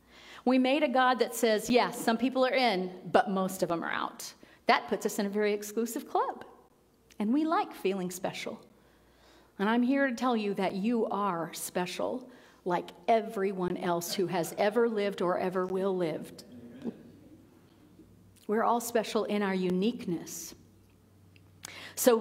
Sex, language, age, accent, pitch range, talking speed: female, English, 40-59, American, 190-260 Hz, 155 wpm